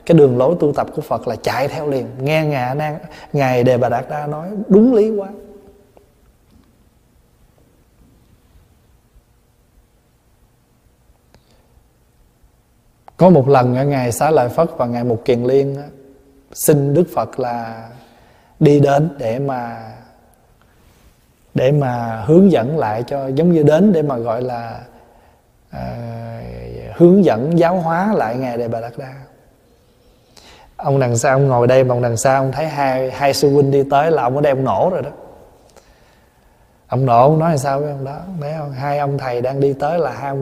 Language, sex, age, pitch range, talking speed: Vietnamese, male, 20-39, 125-150 Hz, 165 wpm